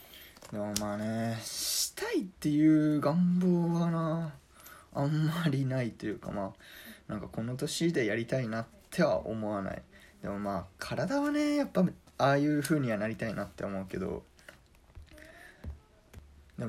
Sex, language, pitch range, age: male, Japanese, 105-160 Hz, 20-39